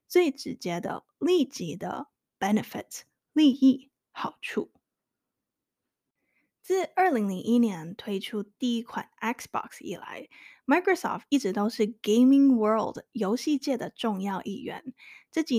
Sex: female